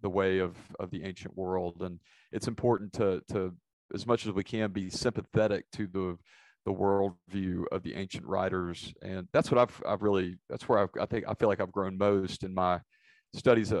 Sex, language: male, English